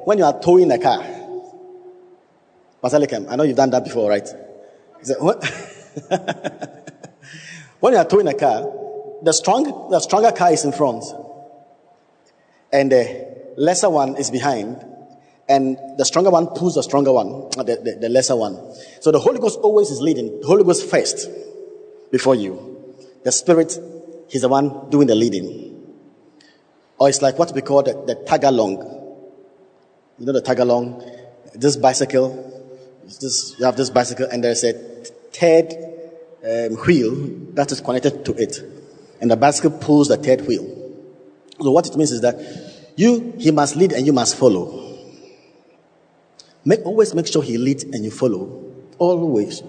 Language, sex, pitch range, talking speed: English, male, 130-195 Hz, 160 wpm